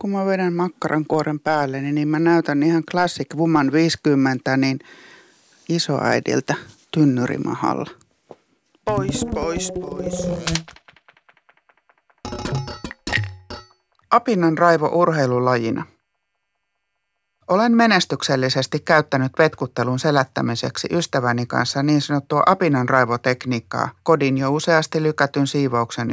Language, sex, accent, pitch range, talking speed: Finnish, male, native, 120-165 Hz, 80 wpm